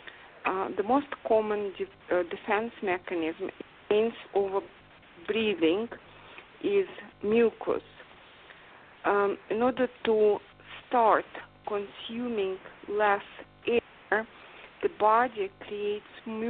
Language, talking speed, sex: English, 85 wpm, female